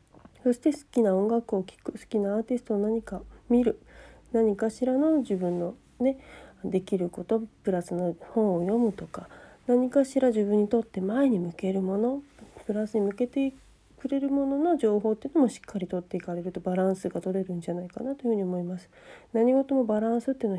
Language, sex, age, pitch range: Japanese, female, 40-59, 185-245 Hz